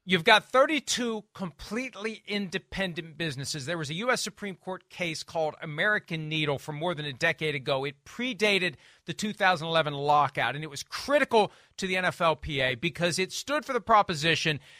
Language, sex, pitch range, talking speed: English, male, 165-220 Hz, 160 wpm